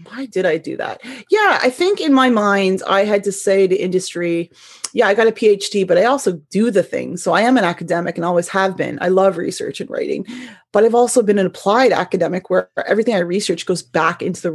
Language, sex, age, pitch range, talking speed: English, female, 30-49, 180-240 Hz, 235 wpm